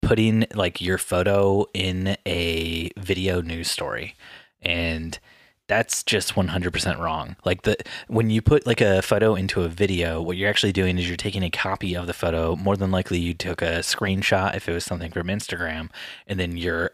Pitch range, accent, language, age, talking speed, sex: 85-105 Hz, American, English, 20-39, 190 wpm, male